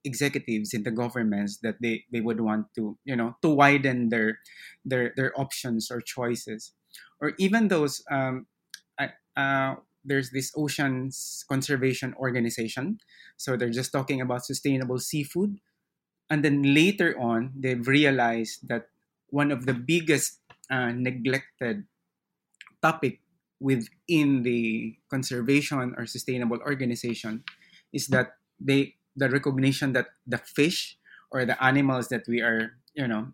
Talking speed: 135 wpm